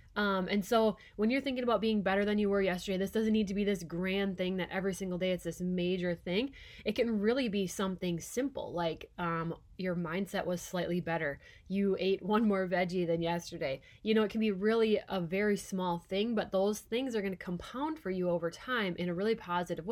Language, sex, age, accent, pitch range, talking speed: English, female, 20-39, American, 180-215 Hz, 225 wpm